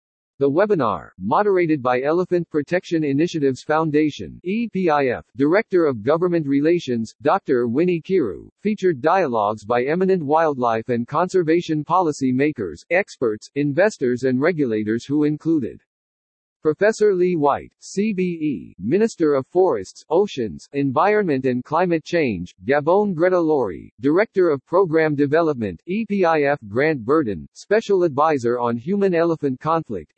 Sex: male